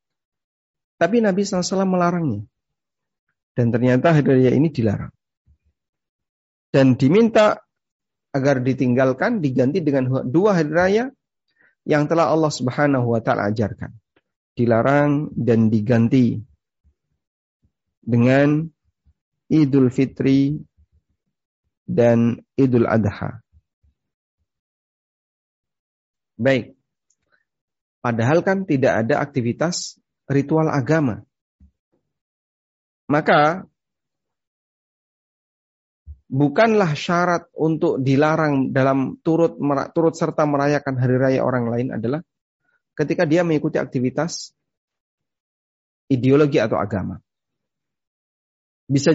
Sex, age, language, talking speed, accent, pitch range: male, 50-69, Indonesian, 75 wpm, native, 120-160 Hz